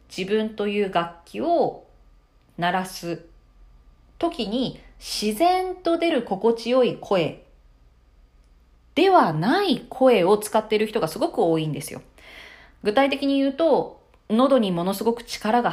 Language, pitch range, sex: Japanese, 165-275 Hz, female